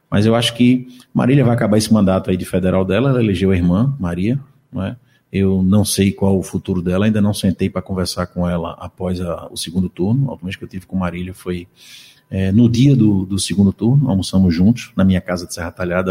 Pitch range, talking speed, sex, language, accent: 95-120 Hz, 225 wpm, male, Portuguese, Brazilian